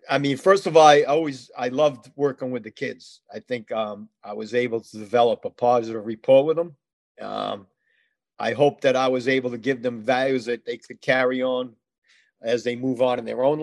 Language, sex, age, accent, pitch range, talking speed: English, male, 50-69, American, 125-150 Hz, 215 wpm